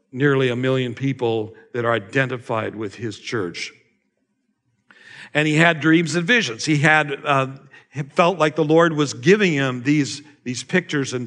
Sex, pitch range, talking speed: male, 125-150 Hz, 165 wpm